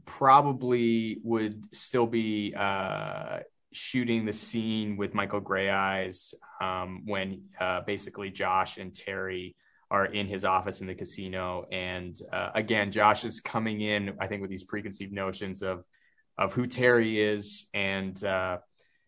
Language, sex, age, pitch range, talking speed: English, male, 20-39, 95-110 Hz, 145 wpm